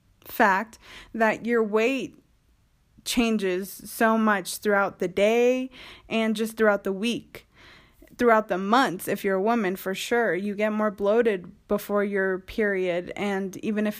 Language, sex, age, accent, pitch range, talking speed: English, female, 20-39, American, 195-230 Hz, 145 wpm